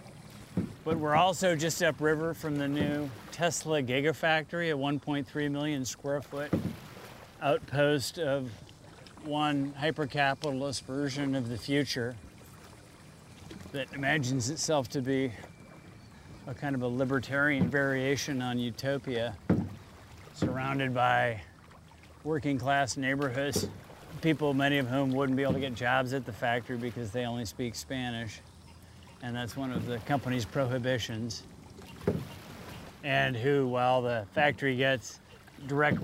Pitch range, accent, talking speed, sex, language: 120-140 Hz, American, 120 wpm, male, English